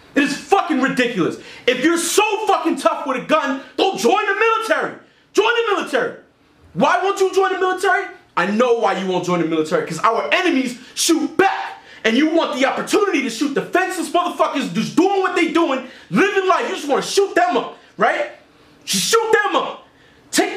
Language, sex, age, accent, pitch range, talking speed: English, male, 20-39, American, 255-375 Hz, 195 wpm